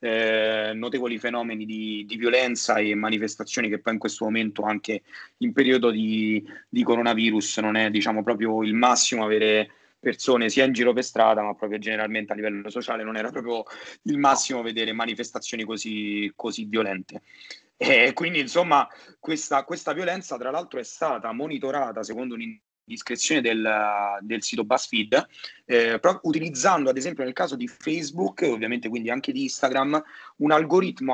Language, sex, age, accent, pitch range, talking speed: Italian, male, 30-49, native, 110-145 Hz, 160 wpm